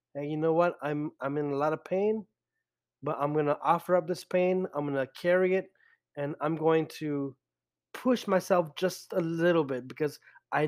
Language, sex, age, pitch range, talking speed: English, male, 20-39, 140-180 Hz, 200 wpm